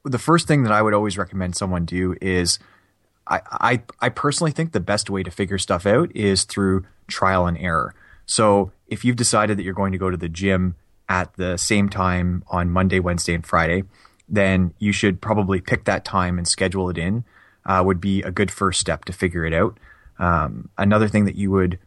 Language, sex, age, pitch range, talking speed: English, male, 20-39, 90-105 Hz, 210 wpm